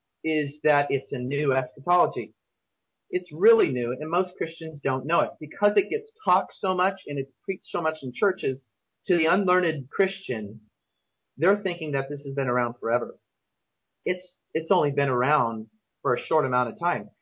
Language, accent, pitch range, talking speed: English, American, 125-170 Hz, 180 wpm